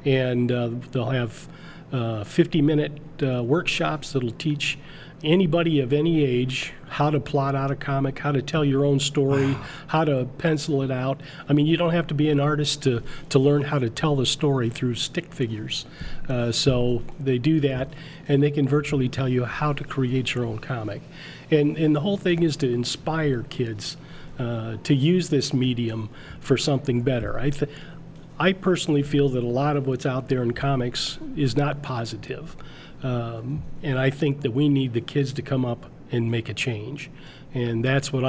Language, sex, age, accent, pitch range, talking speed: English, male, 40-59, American, 125-155 Hz, 190 wpm